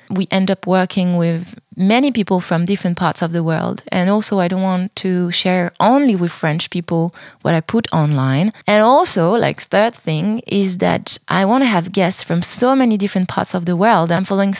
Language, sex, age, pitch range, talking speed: English, female, 20-39, 165-210 Hz, 205 wpm